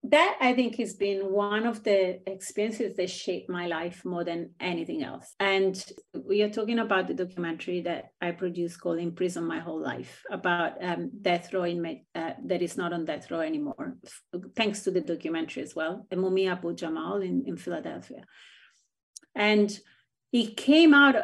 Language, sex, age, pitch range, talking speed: English, female, 30-49, 180-220 Hz, 185 wpm